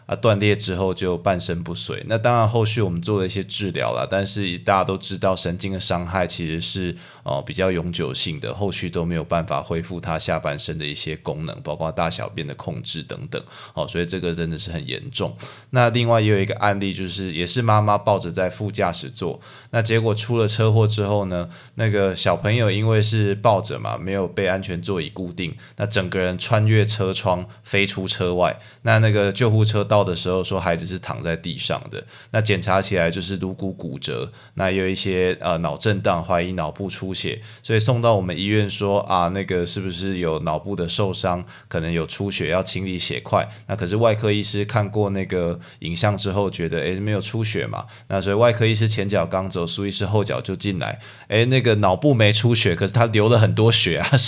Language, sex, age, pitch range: Chinese, male, 20-39, 90-115 Hz